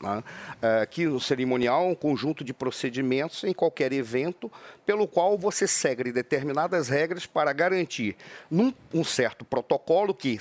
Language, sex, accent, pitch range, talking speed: Portuguese, male, Brazilian, 150-195 Hz, 140 wpm